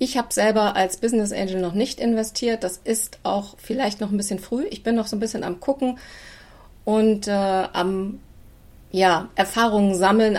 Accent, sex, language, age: German, female, German, 30-49